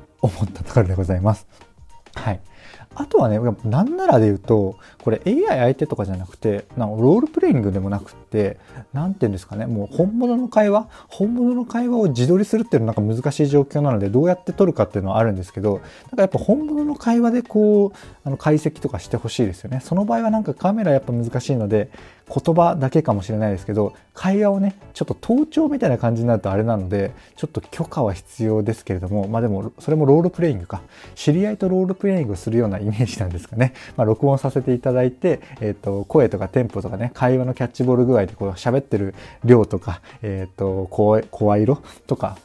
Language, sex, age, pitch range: Japanese, male, 20-39, 105-155 Hz